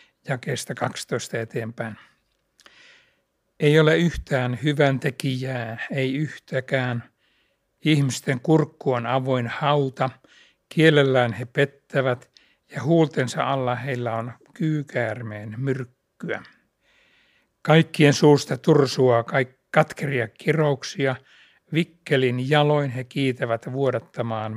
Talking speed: 90 wpm